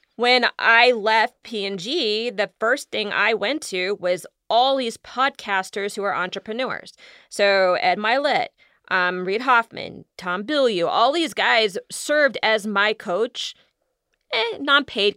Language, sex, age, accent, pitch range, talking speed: English, female, 30-49, American, 210-285 Hz, 140 wpm